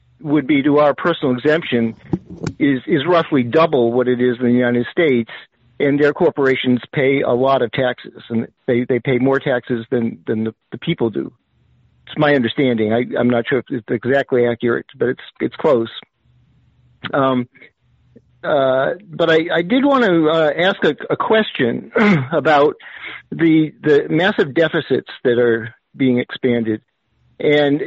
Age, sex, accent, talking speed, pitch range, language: 50-69, male, American, 160 wpm, 125-150 Hz, English